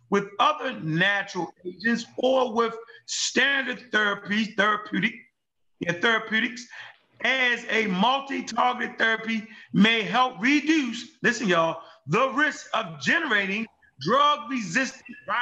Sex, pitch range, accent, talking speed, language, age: male, 185-260 Hz, American, 100 wpm, English, 40-59